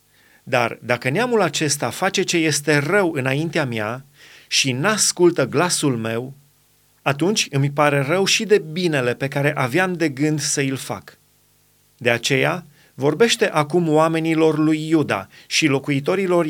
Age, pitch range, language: 30-49, 140-170 Hz, Romanian